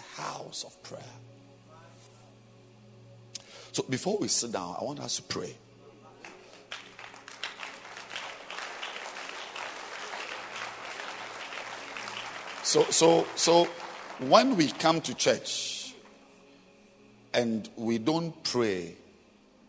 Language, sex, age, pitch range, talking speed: English, male, 50-69, 100-135 Hz, 75 wpm